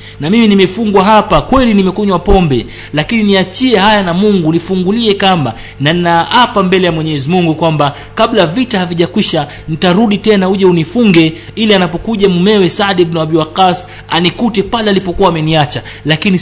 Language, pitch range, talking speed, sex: Swahili, 145-190 Hz, 150 wpm, male